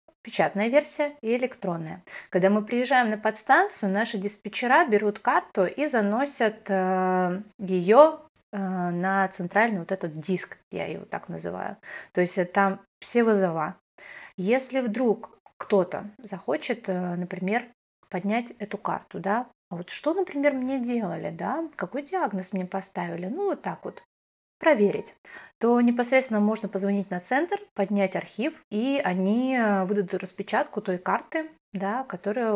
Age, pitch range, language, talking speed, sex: 30-49, 190-240 Hz, Russian, 130 wpm, female